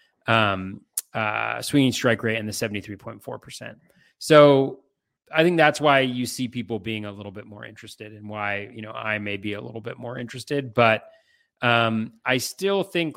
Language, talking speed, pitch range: English, 180 wpm, 110-130 Hz